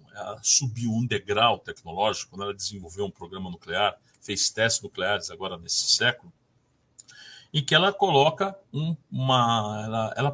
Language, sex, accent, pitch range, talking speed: Portuguese, male, Brazilian, 110-155 Hz, 150 wpm